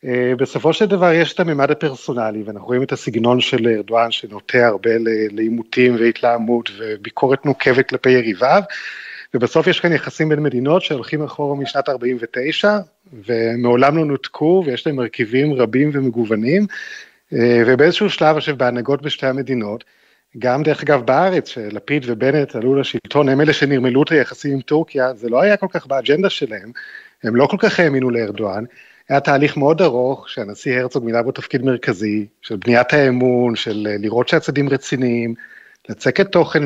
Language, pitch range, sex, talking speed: Hebrew, 120-160 Hz, male, 155 wpm